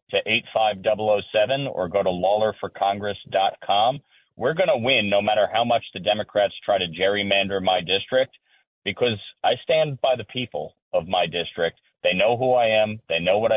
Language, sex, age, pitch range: English, male, 40-59, 95-110 Hz